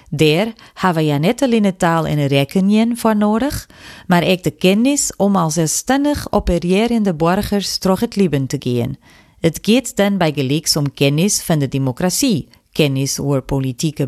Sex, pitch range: female, 150-215 Hz